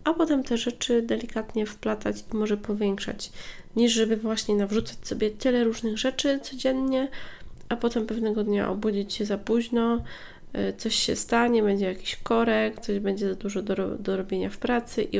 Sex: female